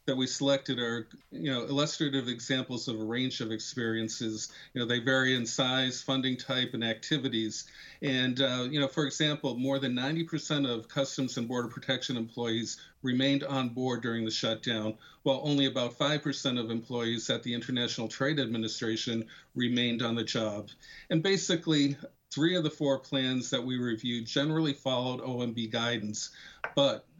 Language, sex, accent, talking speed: English, male, American, 165 wpm